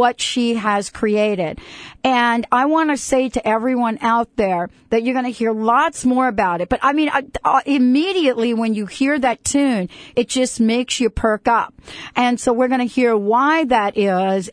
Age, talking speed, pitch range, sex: 50-69, 200 wpm, 210-255 Hz, female